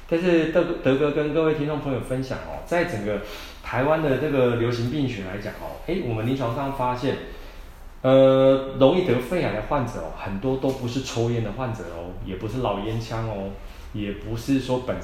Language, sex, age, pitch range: Chinese, male, 20-39, 105-135 Hz